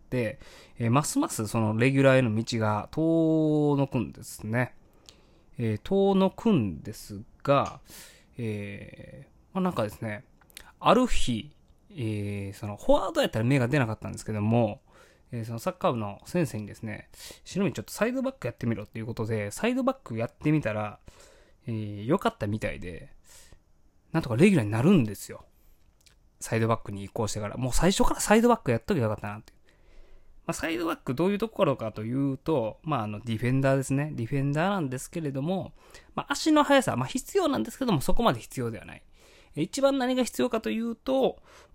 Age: 20-39